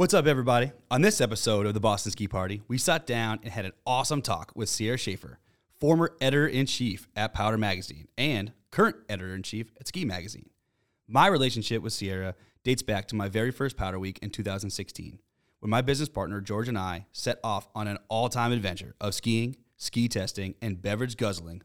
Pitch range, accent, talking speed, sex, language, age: 100-125 Hz, American, 185 wpm, male, English, 30-49